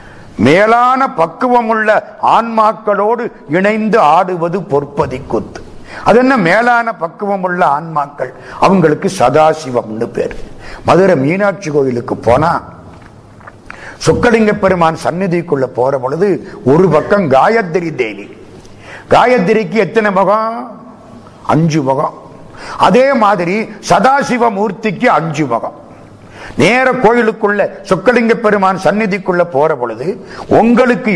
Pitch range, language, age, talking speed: 150-210 Hz, Tamil, 50-69, 95 wpm